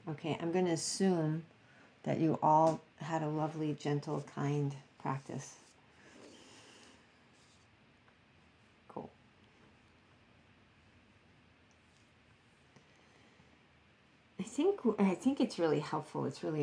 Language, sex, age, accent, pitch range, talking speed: English, female, 50-69, American, 130-155 Hz, 85 wpm